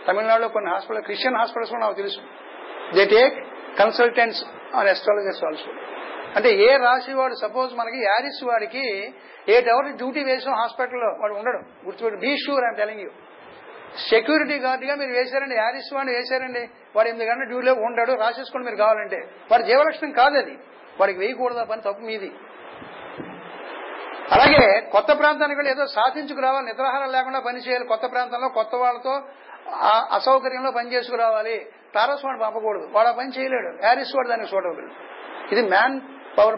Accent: native